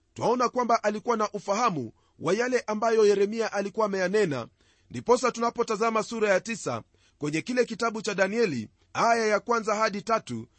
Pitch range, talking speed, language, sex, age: 175-225 Hz, 145 wpm, Swahili, male, 40-59